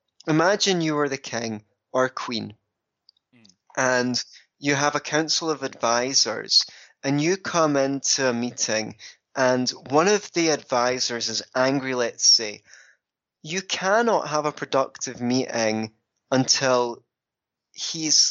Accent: British